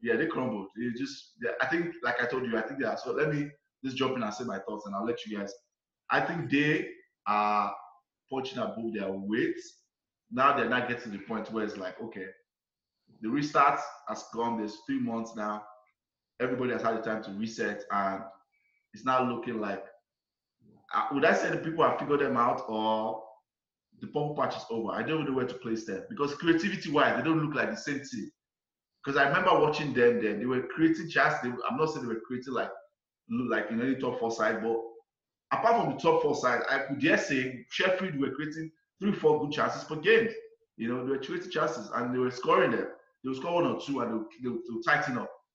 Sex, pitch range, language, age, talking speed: male, 110-155 Hz, English, 20-39, 220 wpm